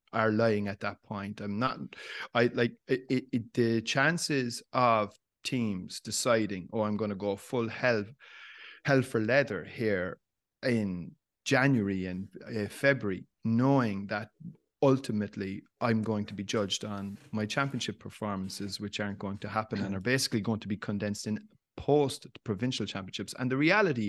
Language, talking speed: English, 155 wpm